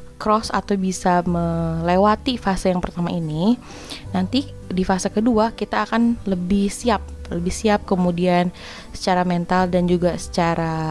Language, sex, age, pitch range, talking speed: Indonesian, female, 20-39, 170-215 Hz, 130 wpm